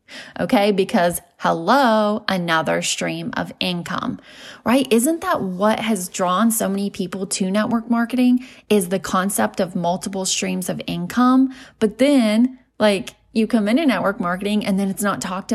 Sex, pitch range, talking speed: female, 185-235 Hz, 155 wpm